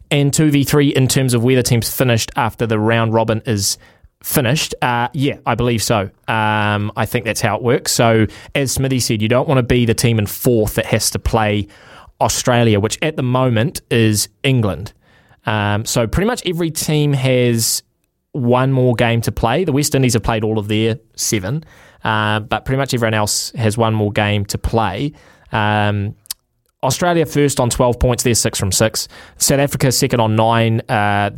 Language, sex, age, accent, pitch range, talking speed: English, male, 20-39, Australian, 110-130 Hz, 190 wpm